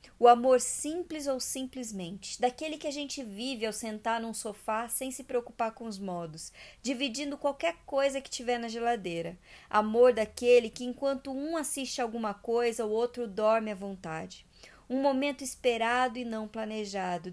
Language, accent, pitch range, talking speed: Portuguese, Brazilian, 215-260 Hz, 160 wpm